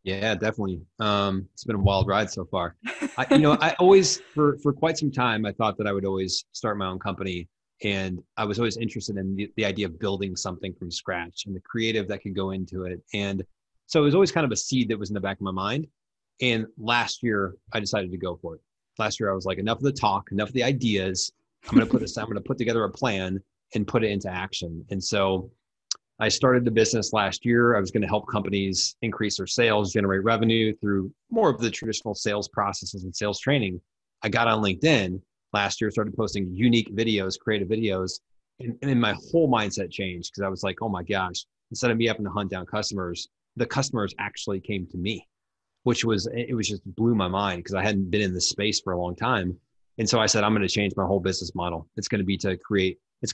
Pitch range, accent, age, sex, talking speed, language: 95-115 Hz, American, 30-49, male, 235 wpm, English